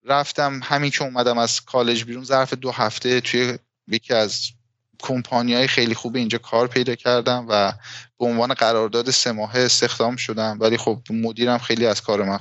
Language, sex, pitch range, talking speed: Persian, male, 110-130 Hz, 170 wpm